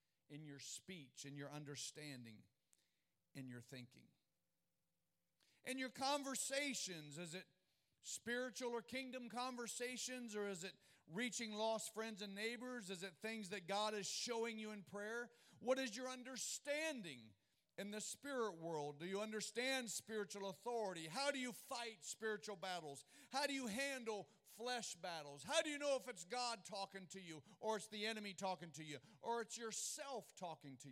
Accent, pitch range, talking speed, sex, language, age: American, 170-240 Hz, 160 wpm, male, English, 50-69